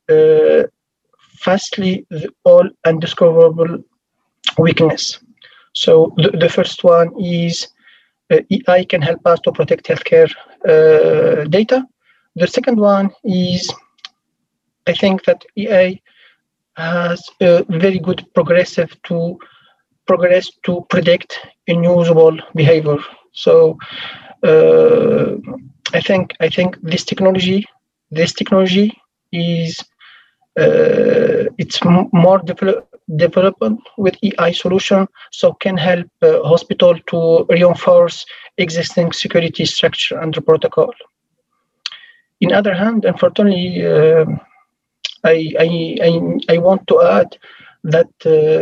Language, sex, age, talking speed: English, male, 40-59, 105 wpm